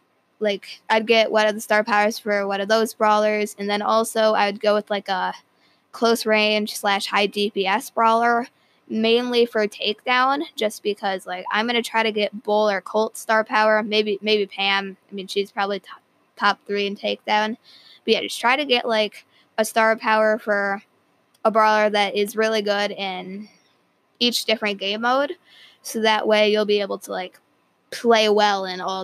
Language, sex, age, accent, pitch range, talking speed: English, female, 20-39, American, 200-225 Hz, 190 wpm